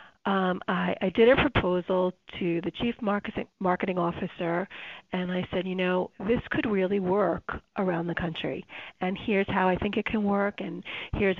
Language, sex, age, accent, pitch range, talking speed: English, female, 40-59, American, 185-230 Hz, 175 wpm